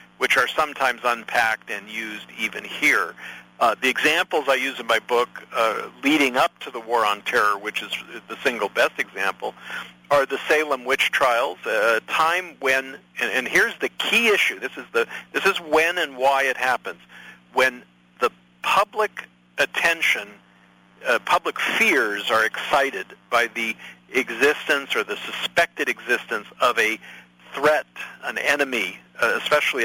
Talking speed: 150 wpm